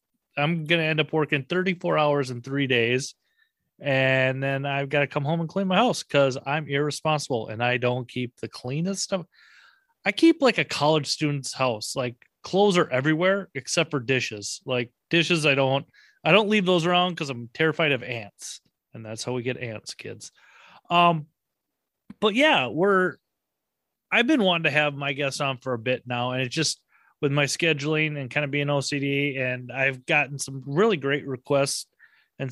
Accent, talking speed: American, 190 wpm